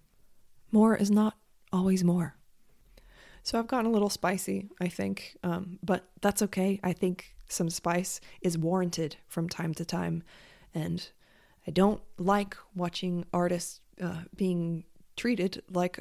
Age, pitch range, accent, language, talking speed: 20-39, 170-205 Hz, American, English, 140 wpm